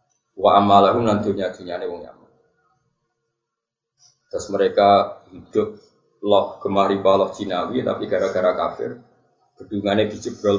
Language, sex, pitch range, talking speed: Indonesian, male, 105-130 Hz, 100 wpm